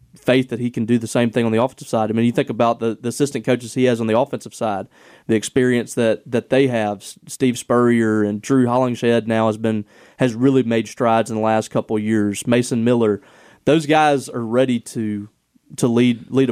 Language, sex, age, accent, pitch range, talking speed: English, male, 20-39, American, 115-130 Hz, 220 wpm